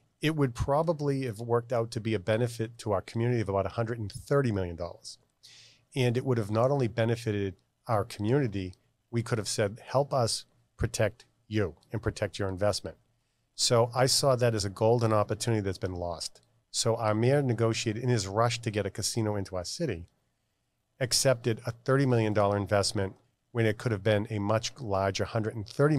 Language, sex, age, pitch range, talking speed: English, male, 40-59, 105-125 Hz, 180 wpm